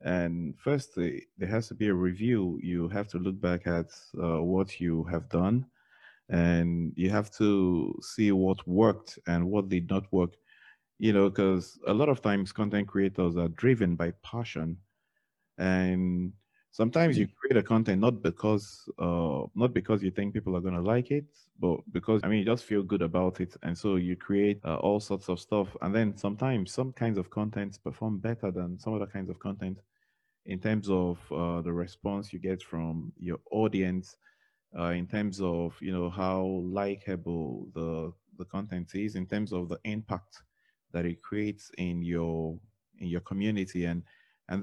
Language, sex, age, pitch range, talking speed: English, male, 30-49, 90-105 Hz, 180 wpm